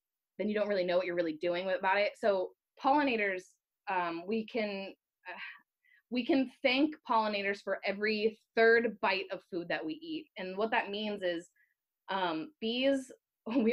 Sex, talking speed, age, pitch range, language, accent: female, 165 wpm, 20-39, 200-265 Hz, English, American